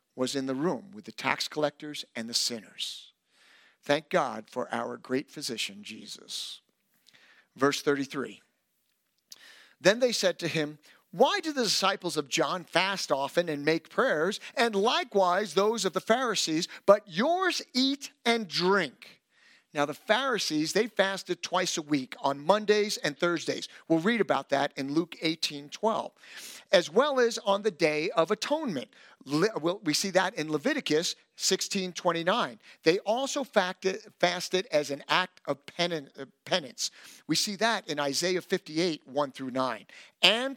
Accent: American